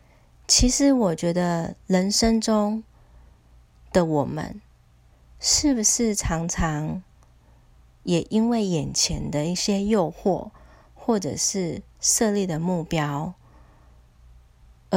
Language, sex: Chinese, female